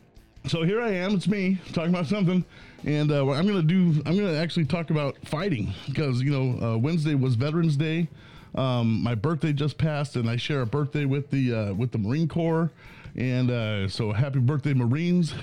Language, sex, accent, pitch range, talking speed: English, male, American, 120-155 Hz, 200 wpm